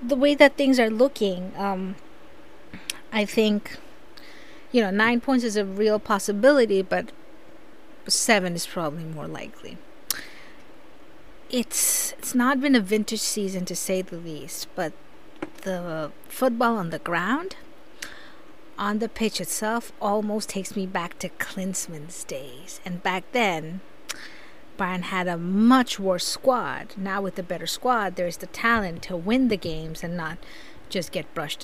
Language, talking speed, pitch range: English, 150 wpm, 185-270 Hz